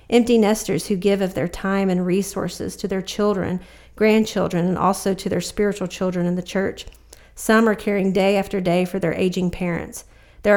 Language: English